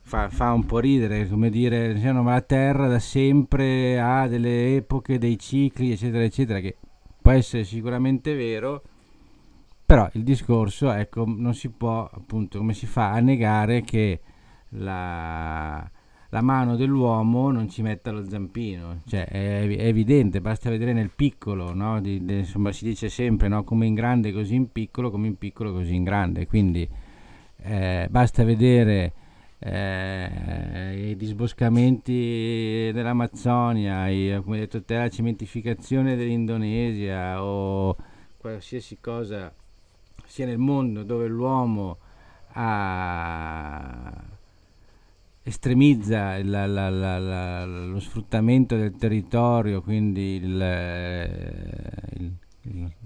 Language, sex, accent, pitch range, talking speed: Italian, male, native, 95-120 Hz, 120 wpm